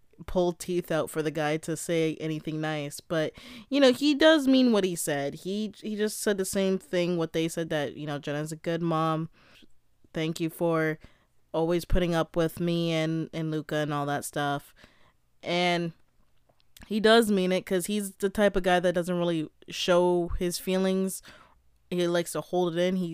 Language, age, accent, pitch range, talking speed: English, 20-39, American, 160-190 Hz, 195 wpm